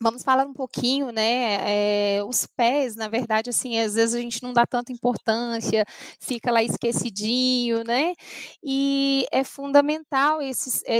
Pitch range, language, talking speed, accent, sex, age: 220-285 Hz, Portuguese, 140 wpm, Brazilian, female, 20-39